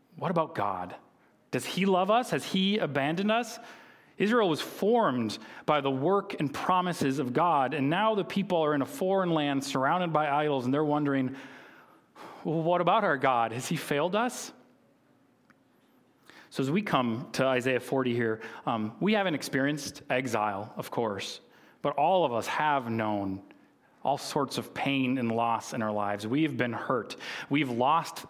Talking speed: 170 wpm